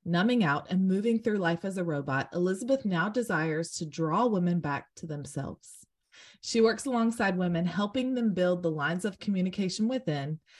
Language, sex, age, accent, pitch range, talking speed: English, female, 20-39, American, 165-220 Hz, 170 wpm